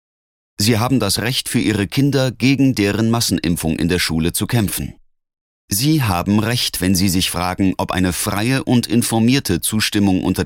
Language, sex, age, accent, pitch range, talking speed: German, male, 30-49, German, 95-130 Hz, 165 wpm